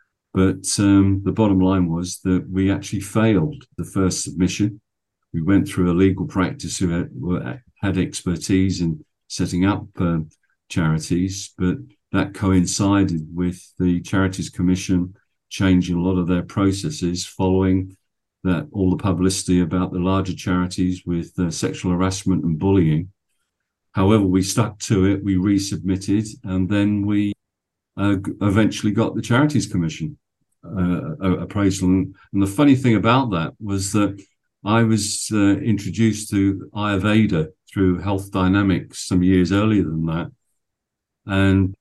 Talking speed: 140 wpm